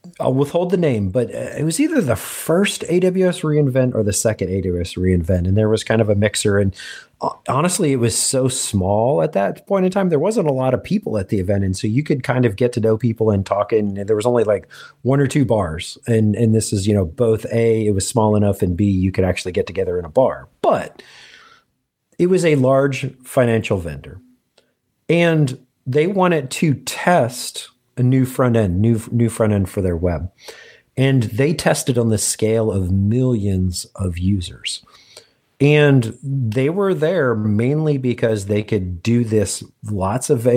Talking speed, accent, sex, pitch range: 195 wpm, American, male, 105-140 Hz